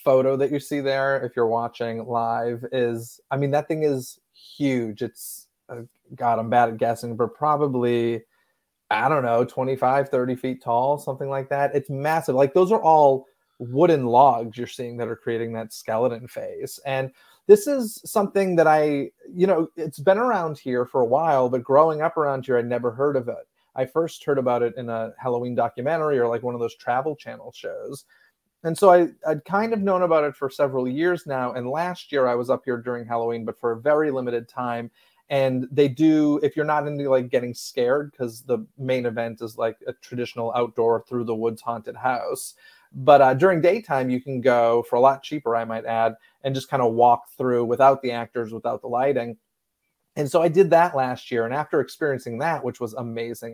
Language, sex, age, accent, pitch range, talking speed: English, male, 30-49, American, 120-150 Hz, 205 wpm